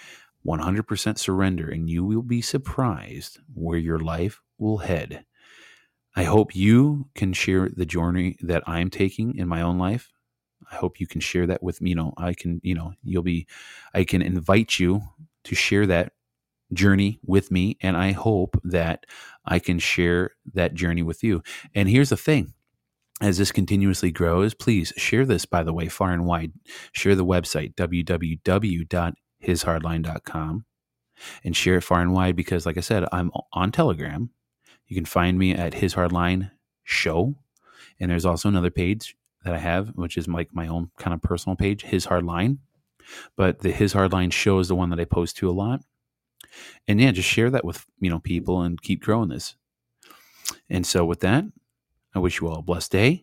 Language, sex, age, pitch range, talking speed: English, male, 30-49, 85-105 Hz, 185 wpm